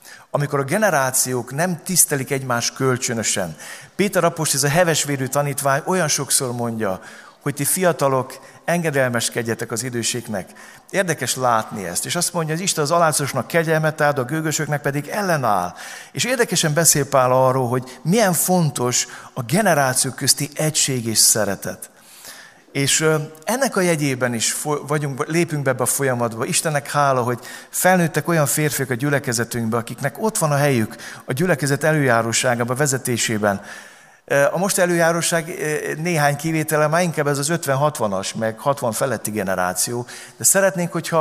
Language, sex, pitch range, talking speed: Hungarian, male, 125-160 Hz, 145 wpm